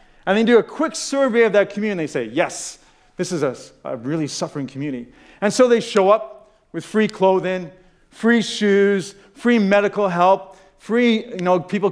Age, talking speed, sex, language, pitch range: 40-59, 185 wpm, male, English, 155-205 Hz